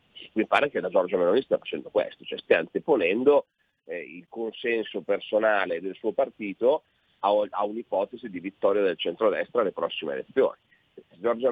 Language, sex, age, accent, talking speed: Italian, male, 40-59, native, 160 wpm